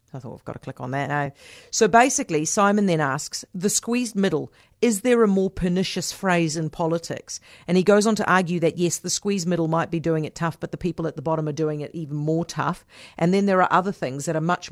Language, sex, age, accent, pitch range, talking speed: English, female, 40-59, Australian, 160-205 Hz, 250 wpm